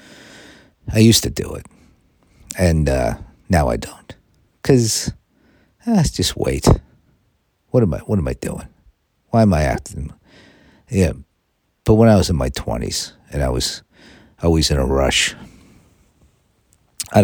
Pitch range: 70-100 Hz